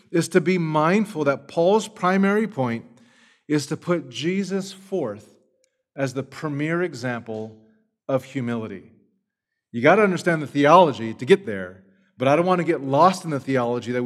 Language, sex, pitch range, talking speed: English, male, 130-175 Hz, 165 wpm